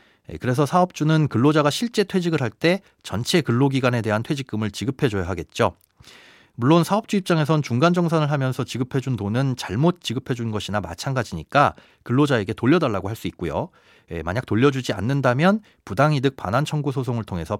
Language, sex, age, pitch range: Korean, male, 40-59, 110-170 Hz